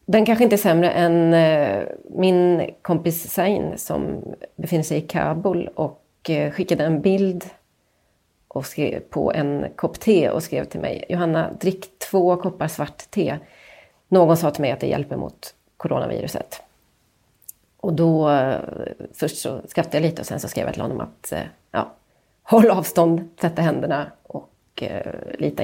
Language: Swedish